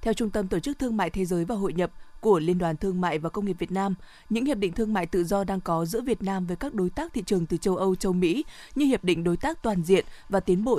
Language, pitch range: Vietnamese, 180-225 Hz